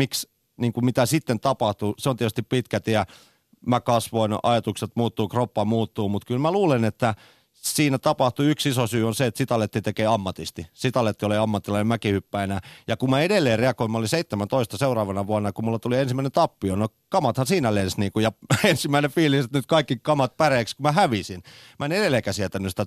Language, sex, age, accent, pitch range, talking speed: Finnish, male, 40-59, native, 105-135 Hz, 185 wpm